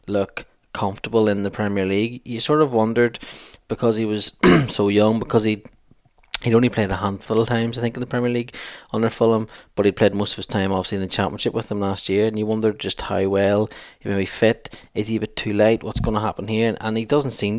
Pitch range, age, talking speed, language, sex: 100-120 Hz, 10-29, 250 wpm, English, male